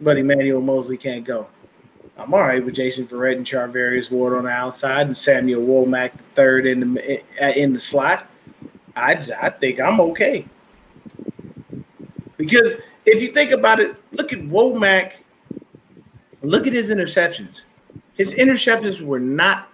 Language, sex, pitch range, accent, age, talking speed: English, male, 140-230 Hz, American, 30-49, 145 wpm